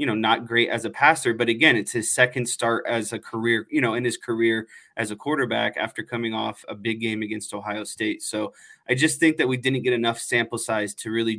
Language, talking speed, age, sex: English, 240 wpm, 20-39, male